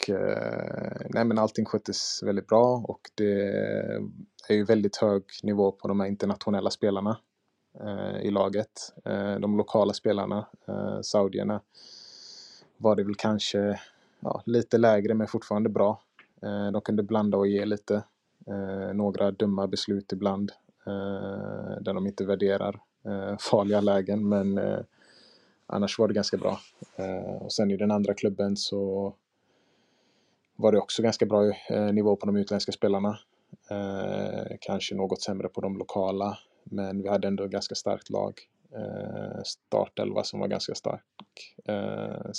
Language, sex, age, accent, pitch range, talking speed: Swedish, male, 20-39, Norwegian, 100-105 Hz, 130 wpm